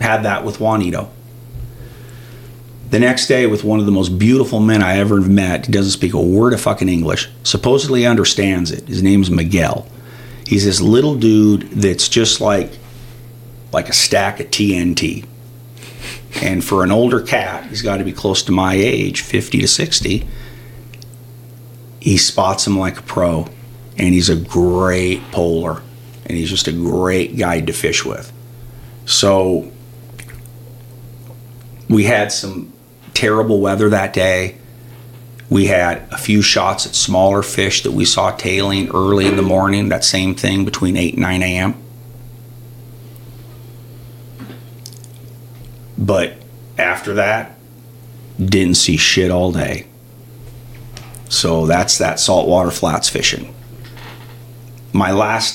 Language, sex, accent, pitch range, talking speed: English, male, American, 95-120 Hz, 140 wpm